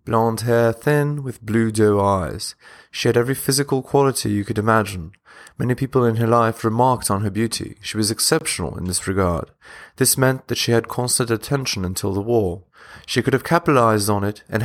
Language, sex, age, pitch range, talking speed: English, male, 20-39, 105-130 Hz, 195 wpm